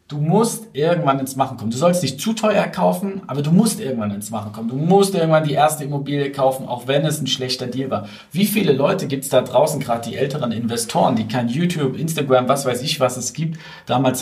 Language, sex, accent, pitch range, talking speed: German, male, German, 130-165 Hz, 230 wpm